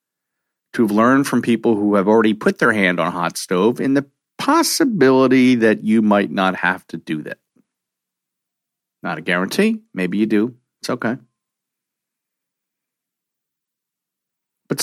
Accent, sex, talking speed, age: American, male, 140 wpm, 50-69